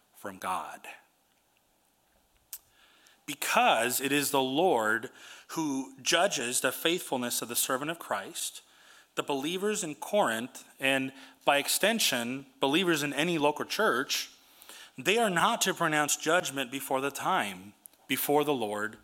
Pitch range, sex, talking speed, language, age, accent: 135-180 Hz, male, 125 wpm, English, 30-49, American